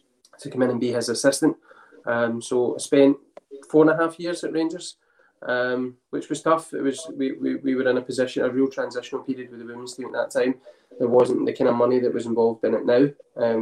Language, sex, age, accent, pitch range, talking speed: English, male, 20-39, British, 120-140 Hz, 240 wpm